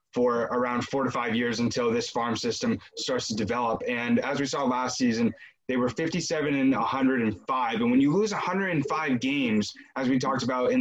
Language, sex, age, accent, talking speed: English, male, 20-39, American, 195 wpm